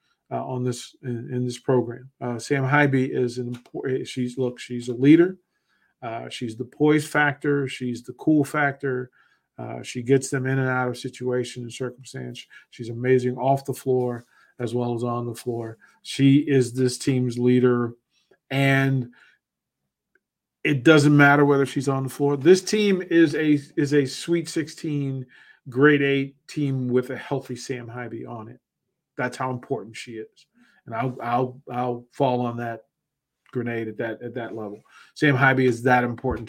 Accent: American